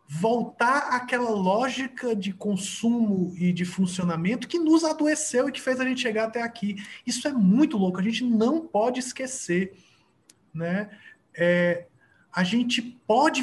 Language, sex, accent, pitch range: Portuguese, male, Brazilian, 180-235 Hz